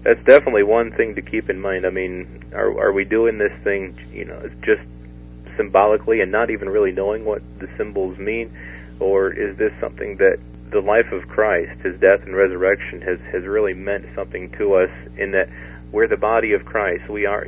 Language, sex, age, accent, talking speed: English, male, 40-59, American, 200 wpm